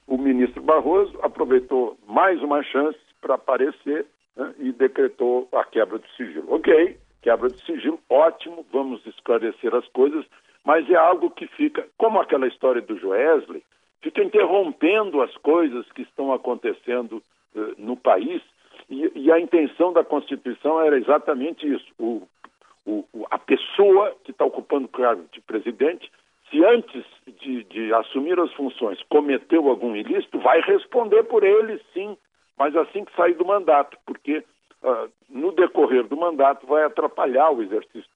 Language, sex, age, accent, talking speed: Portuguese, male, 60-79, Brazilian, 145 wpm